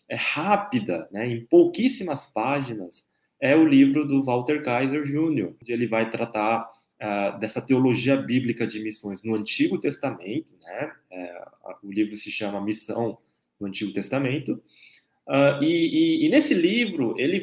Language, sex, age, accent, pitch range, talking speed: Portuguese, male, 20-39, Brazilian, 115-160 Hz, 150 wpm